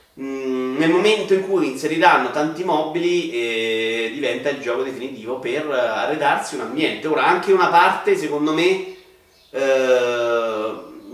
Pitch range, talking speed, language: 120-165 Hz, 125 wpm, Italian